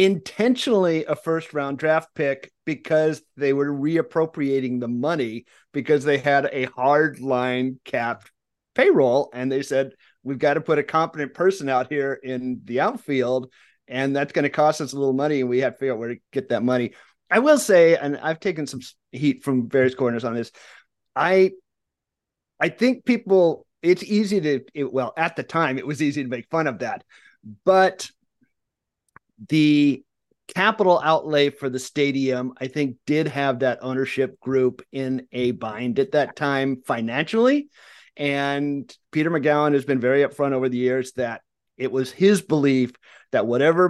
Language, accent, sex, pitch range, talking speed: English, American, male, 130-155 Hz, 170 wpm